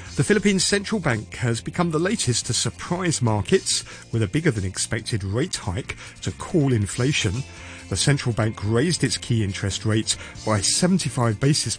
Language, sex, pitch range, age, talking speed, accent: English, male, 100-145 Hz, 50-69, 165 wpm, British